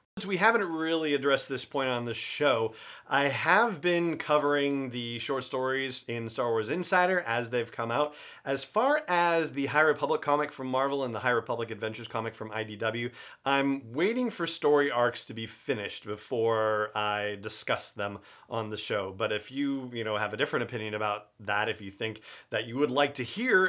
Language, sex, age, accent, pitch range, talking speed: English, male, 40-59, American, 110-145 Hz, 195 wpm